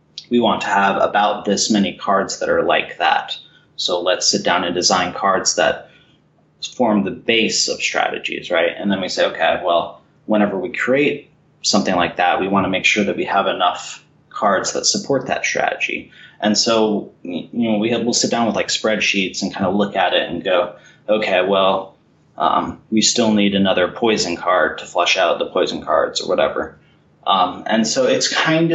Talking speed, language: 195 wpm, English